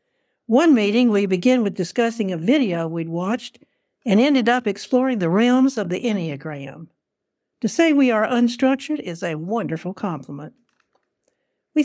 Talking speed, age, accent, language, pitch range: 145 wpm, 60-79, American, English, 185-255 Hz